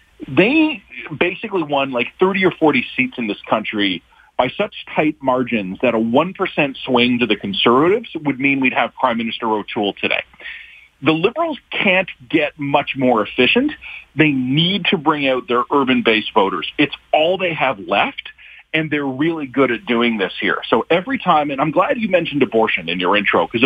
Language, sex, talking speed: English, male, 180 wpm